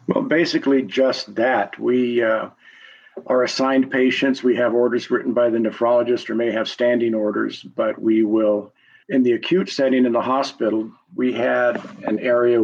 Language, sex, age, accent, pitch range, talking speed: English, male, 50-69, American, 115-135 Hz, 165 wpm